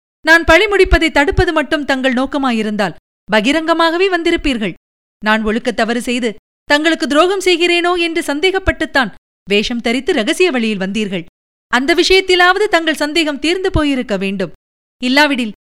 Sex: female